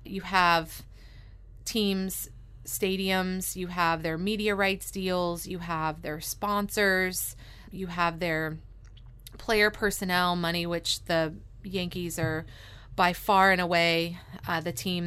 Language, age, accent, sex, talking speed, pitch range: English, 30-49, American, female, 125 wpm, 165-200 Hz